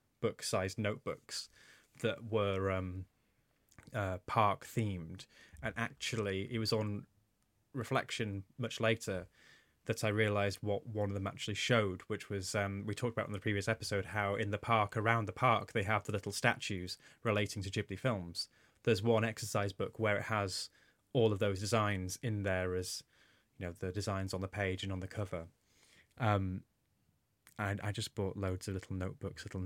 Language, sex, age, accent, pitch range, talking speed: English, male, 10-29, British, 95-110 Hz, 175 wpm